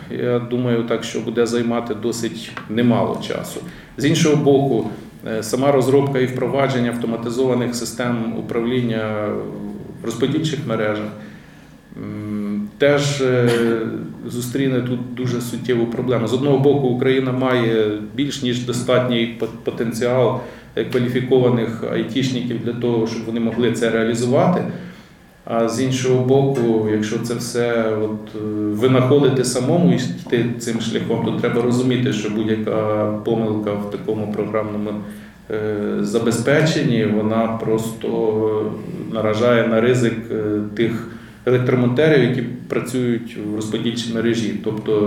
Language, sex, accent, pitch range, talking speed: Ukrainian, male, native, 110-125 Hz, 110 wpm